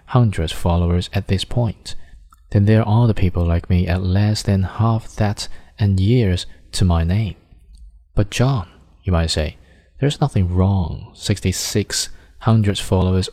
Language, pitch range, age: Chinese, 85-105 Hz, 20-39